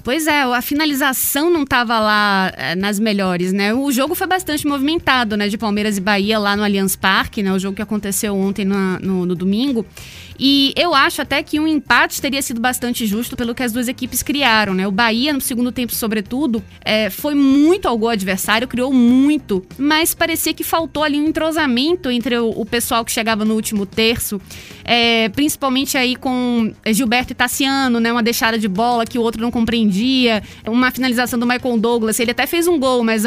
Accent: Brazilian